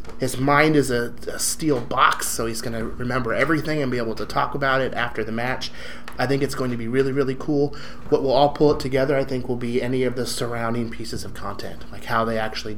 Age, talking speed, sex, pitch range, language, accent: 30-49, 250 wpm, male, 110-130 Hz, English, American